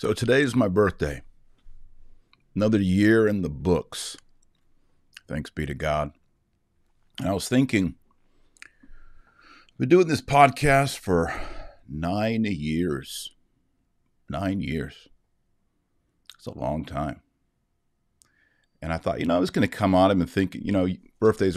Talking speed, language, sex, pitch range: 135 wpm, English, male, 80-100 Hz